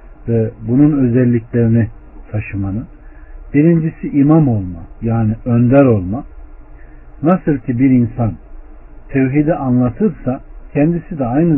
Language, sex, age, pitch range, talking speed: Turkish, male, 50-69, 115-165 Hz, 100 wpm